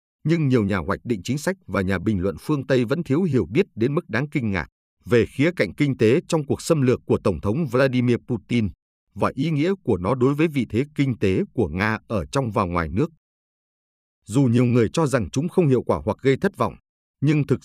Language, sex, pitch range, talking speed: Vietnamese, male, 100-140 Hz, 235 wpm